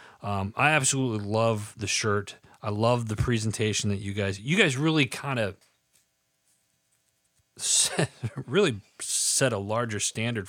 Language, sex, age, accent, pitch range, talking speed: English, male, 30-49, American, 100-135 Hz, 130 wpm